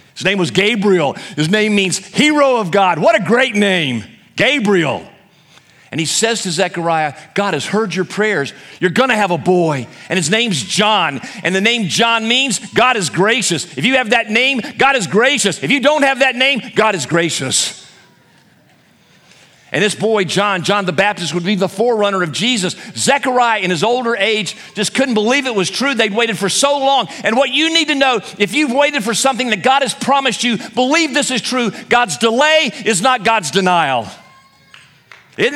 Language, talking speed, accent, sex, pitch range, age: English, 195 wpm, American, male, 190-260 Hz, 50-69